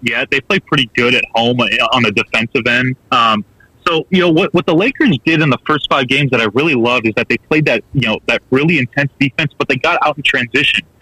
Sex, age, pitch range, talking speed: male, 30-49, 120-150 Hz, 250 wpm